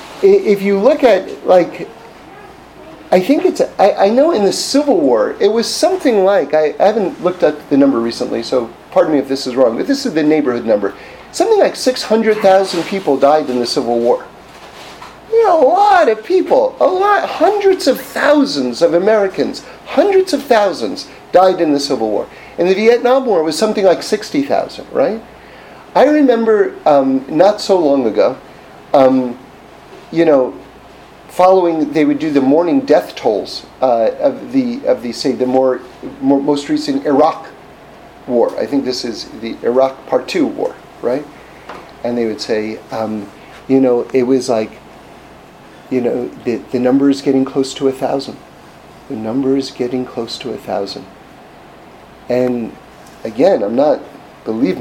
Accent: American